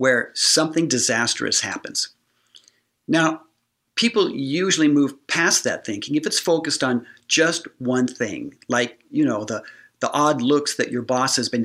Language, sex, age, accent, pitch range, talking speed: English, male, 50-69, American, 125-155 Hz, 155 wpm